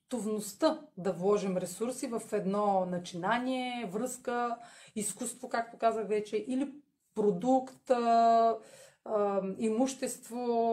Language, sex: Bulgarian, female